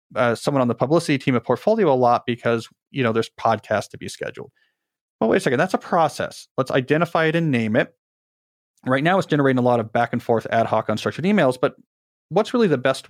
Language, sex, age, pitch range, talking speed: English, male, 40-59, 115-145 Hz, 230 wpm